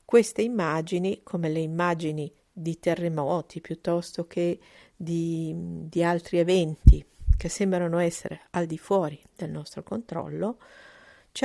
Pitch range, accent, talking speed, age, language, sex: 165-195 Hz, native, 120 wpm, 50-69, Italian, female